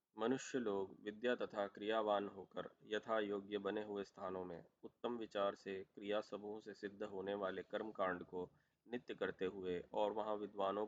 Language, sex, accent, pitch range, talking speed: Hindi, male, native, 95-110 Hz, 160 wpm